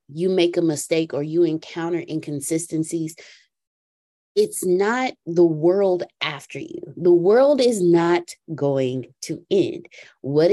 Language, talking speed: English, 125 wpm